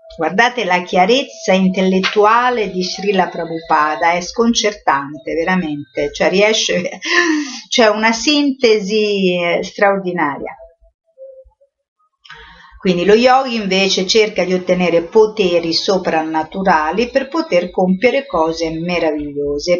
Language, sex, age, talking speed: Italian, female, 50-69, 95 wpm